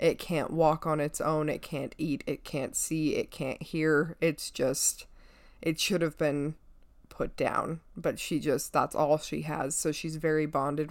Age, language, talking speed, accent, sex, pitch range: 20-39, English, 185 wpm, American, female, 150-175 Hz